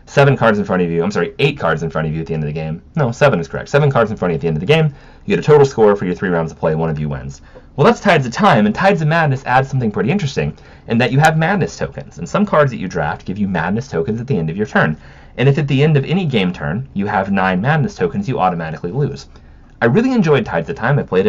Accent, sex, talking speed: American, male, 315 wpm